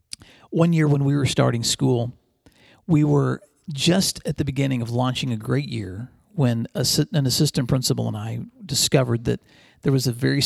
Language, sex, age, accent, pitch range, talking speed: English, male, 40-59, American, 115-140 Hz, 170 wpm